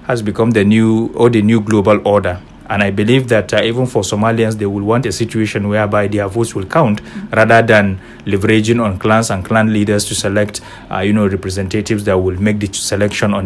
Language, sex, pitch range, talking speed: English, male, 100-115 Hz, 210 wpm